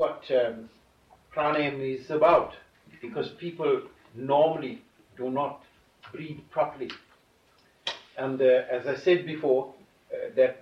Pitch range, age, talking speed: 130-205 Hz, 60-79, 115 wpm